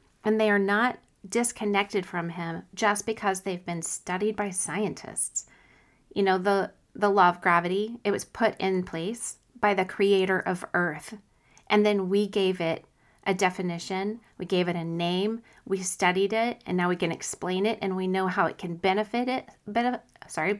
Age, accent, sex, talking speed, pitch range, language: 40-59, American, female, 180 wpm, 185-220 Hz, English